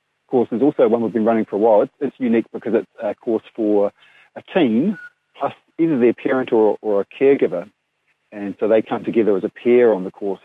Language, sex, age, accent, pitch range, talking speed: English, male, 40-59, British, 100-125 Hz, 225 wpm